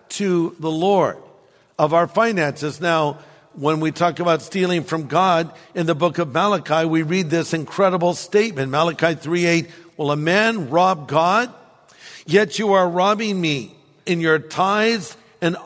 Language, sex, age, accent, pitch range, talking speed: English, male, 50-69, American, 155-185 Hz, 155 wpm